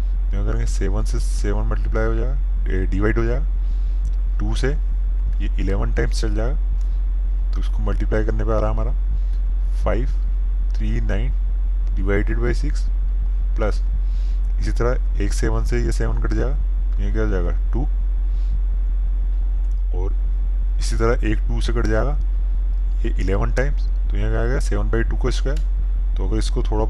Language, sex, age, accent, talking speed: Hindi, male, 20-39, native, 155 wpm